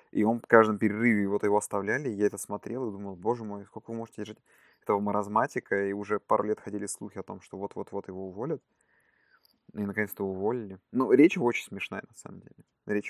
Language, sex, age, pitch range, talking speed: Russian, male, 20-39, 105-120 Hz, 200 wpm